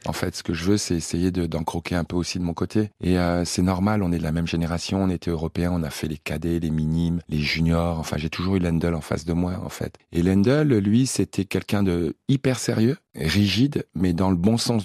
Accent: French